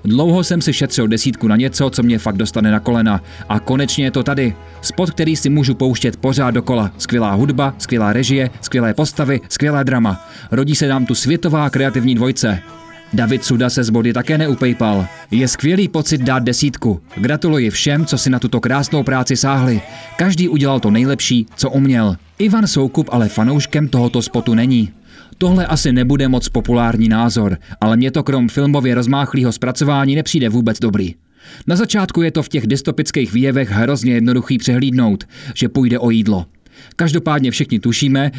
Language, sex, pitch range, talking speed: Czech, male, 115-140 Hz, 170 wpm